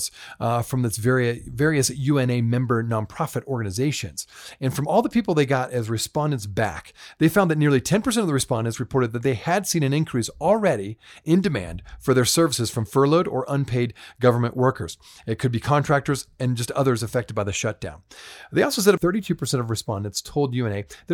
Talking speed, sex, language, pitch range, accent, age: 190 wpm, male, English, 115-160 Hz, American, 40-59